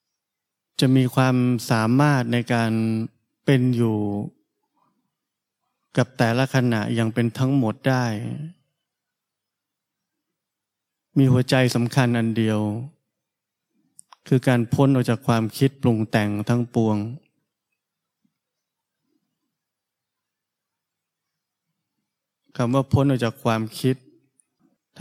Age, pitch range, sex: 20-39, 120-140 Hz, male